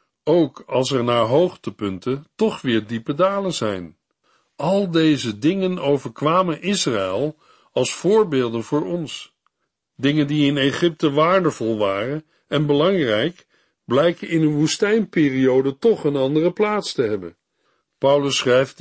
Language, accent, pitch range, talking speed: Dutch, Dutch, 125-175 Hz, 125 wpm